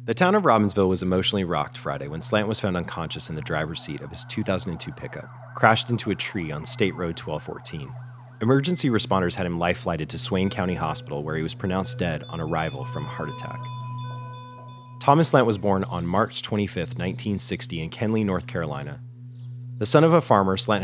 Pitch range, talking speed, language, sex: 90-125 Hz, 195 wpm, English, male